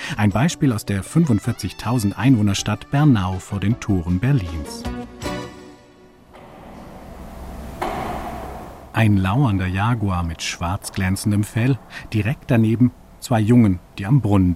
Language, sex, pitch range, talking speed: German, male, 100-135 Hz, 105 wpm